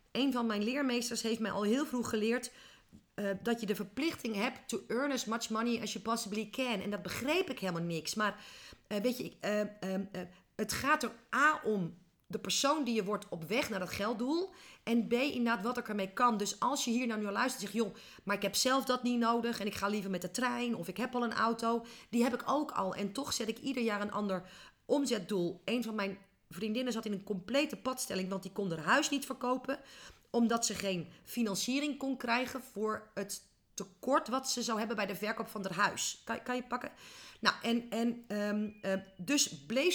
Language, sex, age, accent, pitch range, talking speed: Dutch, female, 40-59, Dutch, 205-255 Hz, 225 wpm